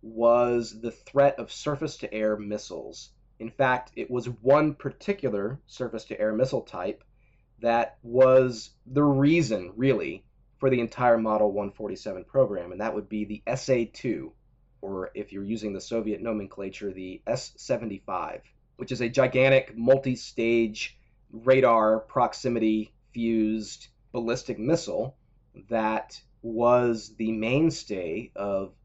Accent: American